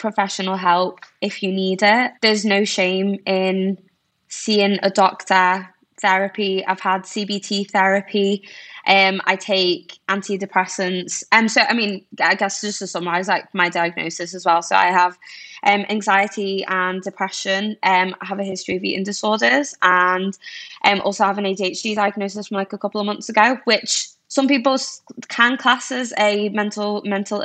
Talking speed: 170 wpm